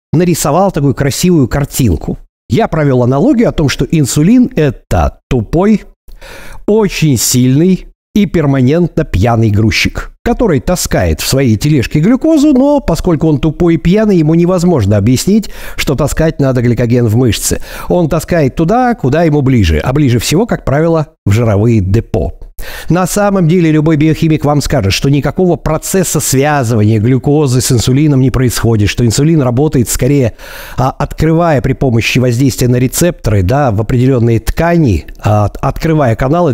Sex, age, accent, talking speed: male, 50-69, native, 140 wpm